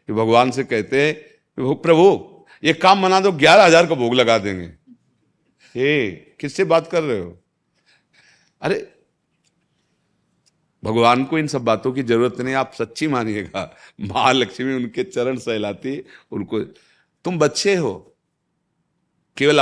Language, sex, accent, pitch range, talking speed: Hindi, male, native, 120-155 Hz, 130 wpm